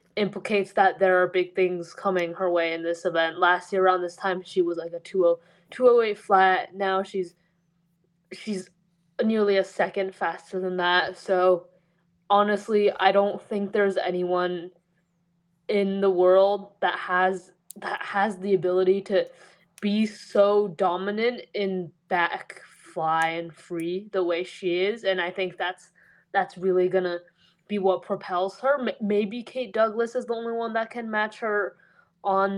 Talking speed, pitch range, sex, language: 155 wpm, 175-200 Hz, female, English